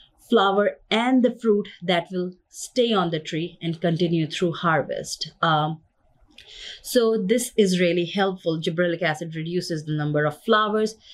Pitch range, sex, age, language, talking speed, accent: 160-210 Hz, female, 30-49, English, 145 wpm, Indian